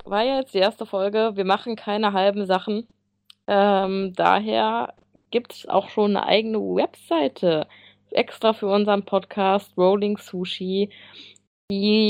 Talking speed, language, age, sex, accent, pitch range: 140 wpm, German, 20-39, female, German, 170-210 Hz